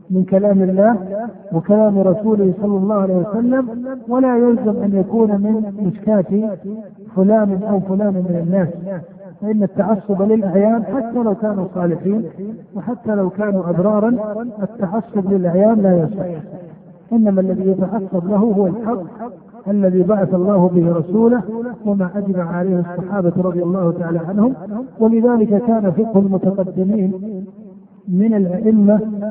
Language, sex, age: Arabic, male, 50-69